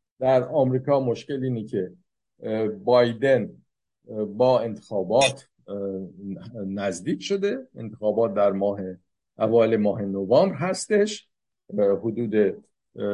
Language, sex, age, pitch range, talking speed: Persian, male, 50-69, 115-165 Hz, 80 wpm